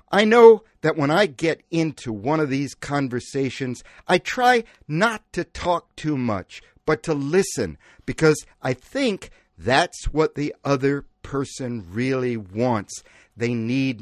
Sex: male